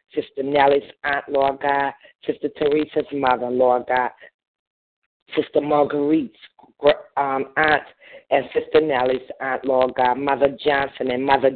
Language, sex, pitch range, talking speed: English, female, 130-145 Hz, 125 wpm